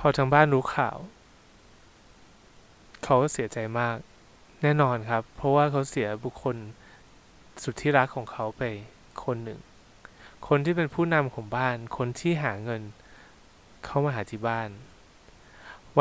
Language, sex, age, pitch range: Thai, male, 20-39, 115-145 Hz